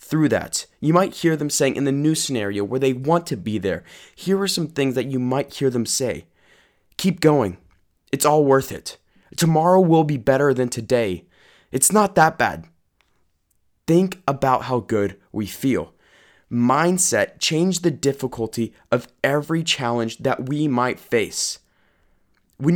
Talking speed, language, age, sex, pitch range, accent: 160 wpm, English, 20-39, male, 115-150 Hz, American